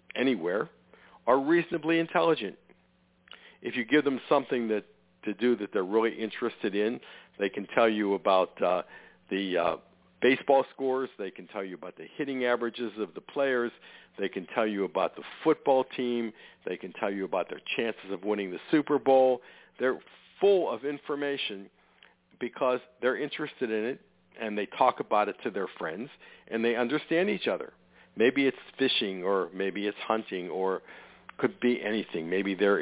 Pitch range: 95-140 Hz